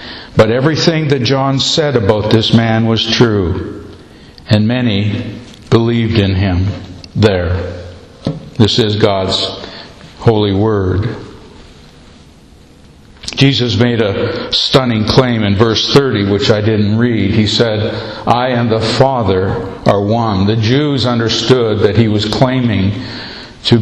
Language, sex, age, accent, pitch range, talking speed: English, male, 60-79, American, 105-125 Hz, 125 wpm